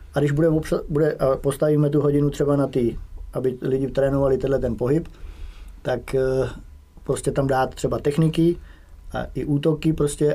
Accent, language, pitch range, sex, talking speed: Czech, English, 115-140 Hz, male, 150 wpm